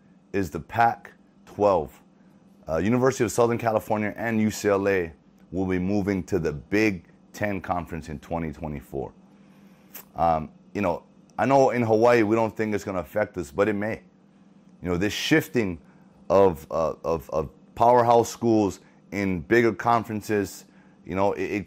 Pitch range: 95-120 Hz